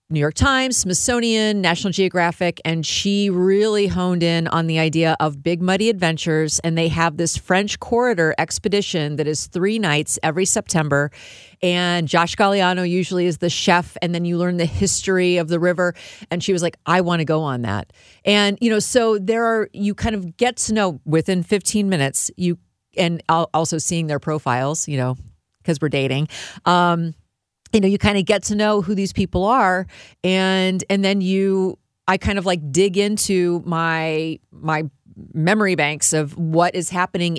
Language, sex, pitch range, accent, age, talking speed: English, female, 160-195 Hz, American, 40-59, 185 wpm